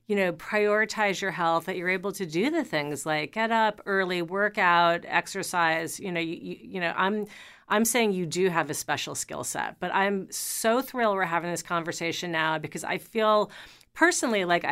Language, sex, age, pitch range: English, female, 40-59, 170-200 Hz